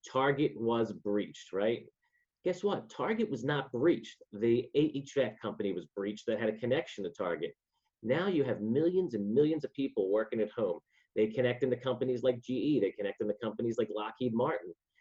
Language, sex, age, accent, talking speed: English, male, 30-49, American, 180 wpm